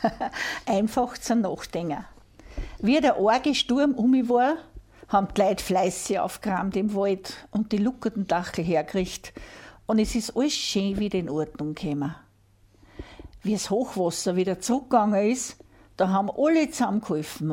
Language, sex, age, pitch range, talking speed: German, female, 60-79, 175-230 Hz, 140 wpm